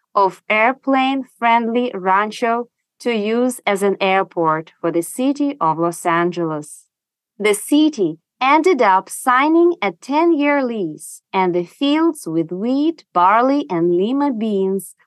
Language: English